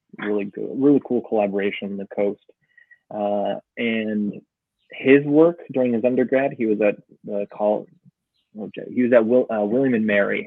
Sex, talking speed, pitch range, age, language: male, 165 wpm, 100-115 Hz, 20-39, English